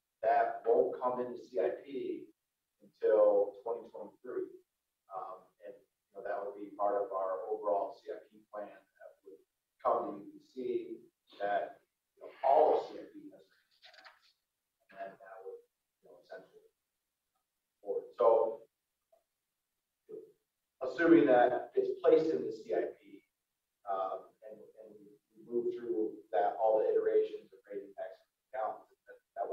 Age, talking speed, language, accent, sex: 40-59, 130 wpm, English, American, male